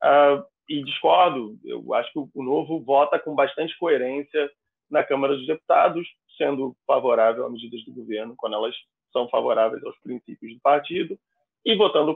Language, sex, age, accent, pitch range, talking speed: Portuguese, male, 20-39, Brazilian, 140-195 Hz, 160 wpm